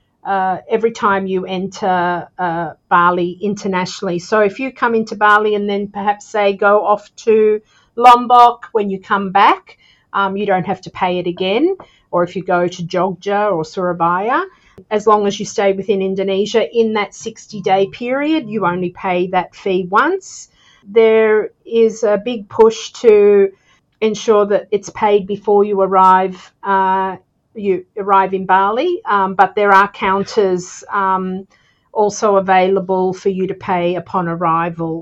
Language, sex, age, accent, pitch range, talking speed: English, female, 50-69, Australian, 185-215 Hz, 155 wpm